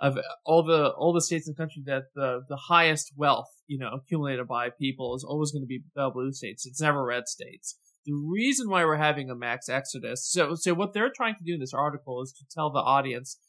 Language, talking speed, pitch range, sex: English, 230 wpm, 135-165 Hz, male